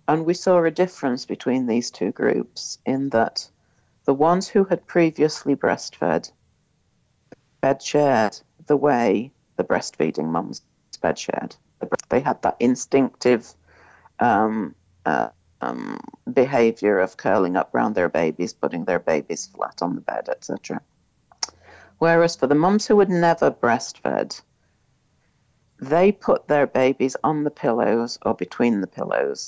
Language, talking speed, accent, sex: English, 130 wpm, British, female